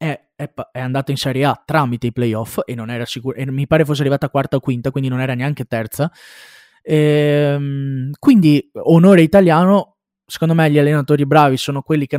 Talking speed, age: 175 wpm, 20-39